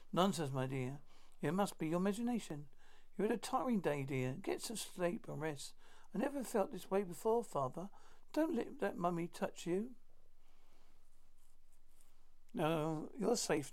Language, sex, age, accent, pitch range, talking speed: English, male, 60-79, British, 140-185 Hz, 155 wpm